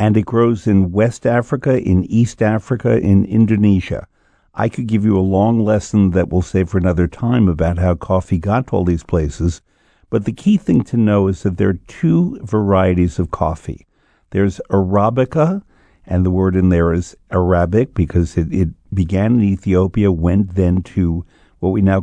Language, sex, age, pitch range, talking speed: English, male, 50-69, 90-115 Hz, 185 wpm